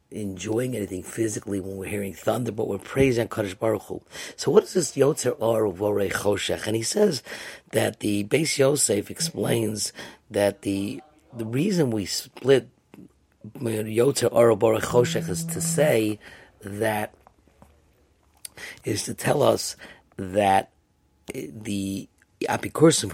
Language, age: English, 50-69